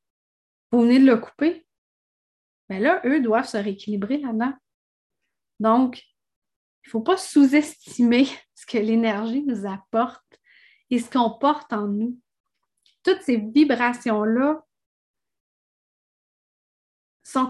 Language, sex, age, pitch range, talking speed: French, female, 30-49, 205-255 Hz, 115 wpm